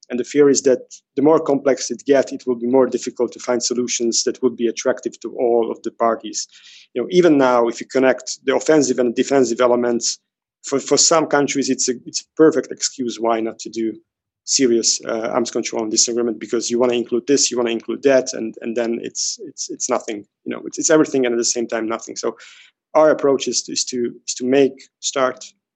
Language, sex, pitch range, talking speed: Slovak, male, 120-135 Hz, 225 wpm